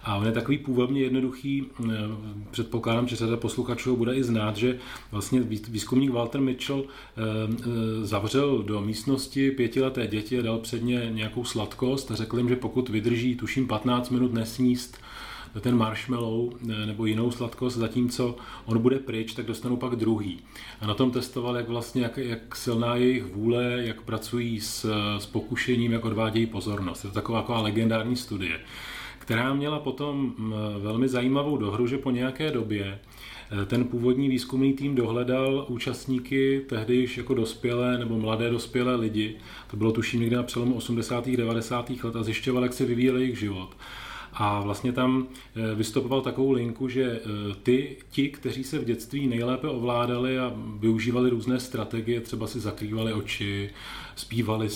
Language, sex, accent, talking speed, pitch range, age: Czech, male, native, 155 wpm, 110-125 Hz, 30-49